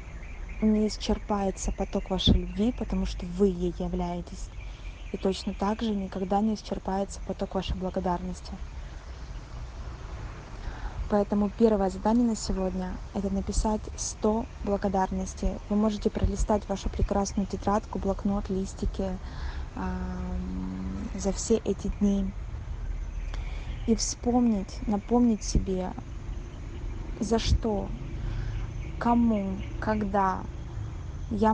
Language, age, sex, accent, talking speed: Russian, 20-39, female, native, 95 wpm